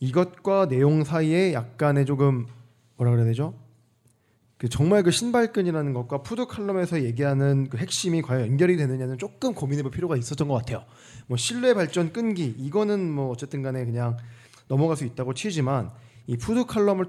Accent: native